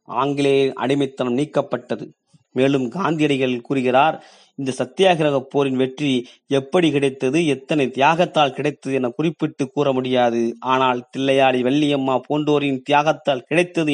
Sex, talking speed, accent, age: male, 105 wpm, native, 30-49